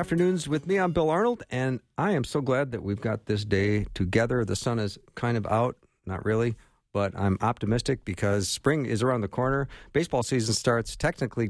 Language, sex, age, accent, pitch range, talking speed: English, male, 50-69, American, 100-130 Hz, 200 wpm